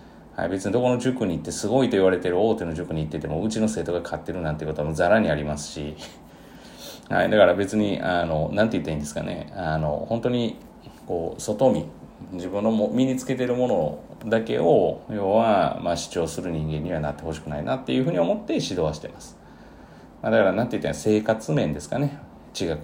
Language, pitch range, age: Japanese, 80-125 Hz, 40-59